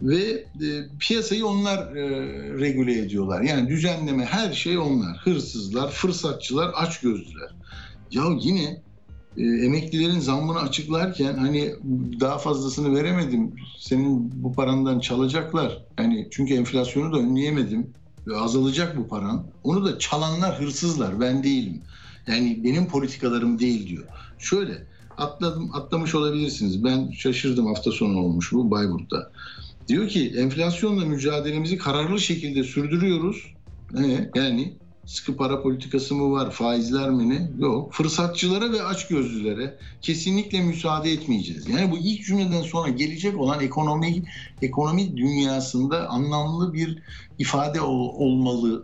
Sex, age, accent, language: male, 60-79, native, Turkish